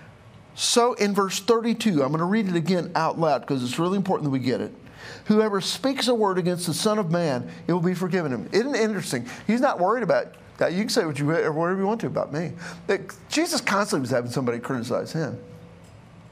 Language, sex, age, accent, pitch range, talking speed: English, male, 50-69, American, 150-225 Hz, 215 wpm